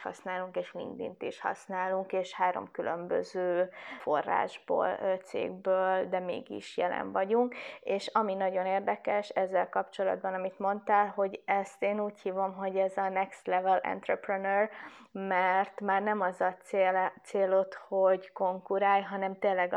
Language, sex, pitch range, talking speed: Hungarian, female, 185-200 Hz, 135 wpm